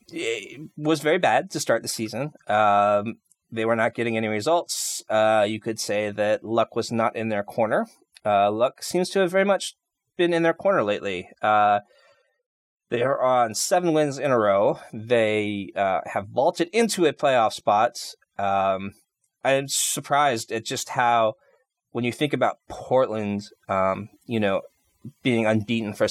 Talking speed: 170 wpm